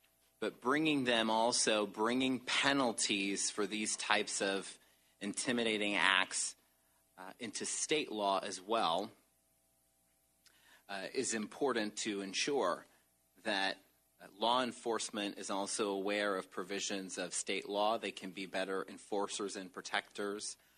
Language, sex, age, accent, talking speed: English, male, 30-49, American, 120 wpm